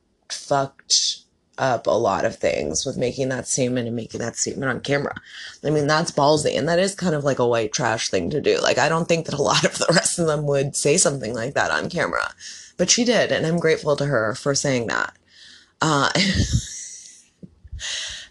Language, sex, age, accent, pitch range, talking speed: English, female, 20-39, American, 140-180 Hz, 205 wpm